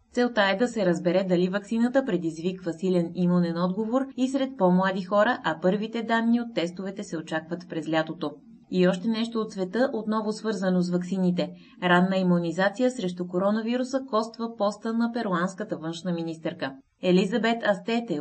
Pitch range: 170-220 Hz